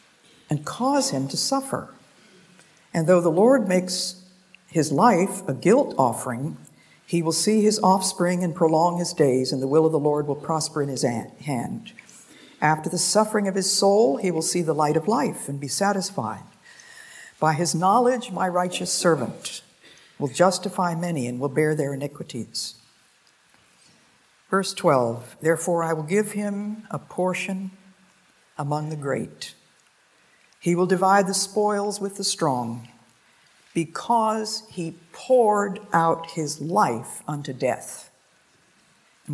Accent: American